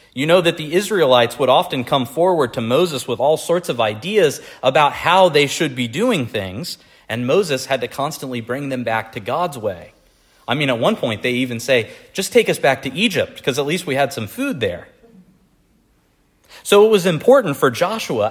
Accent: American